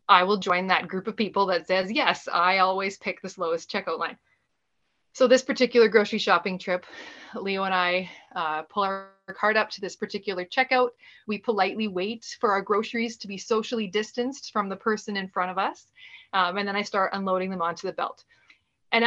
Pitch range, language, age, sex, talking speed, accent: 190-250 Hz, English, 30-49, female, 200 wpm, American